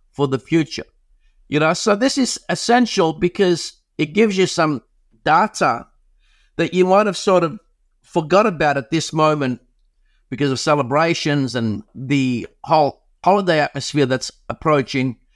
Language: English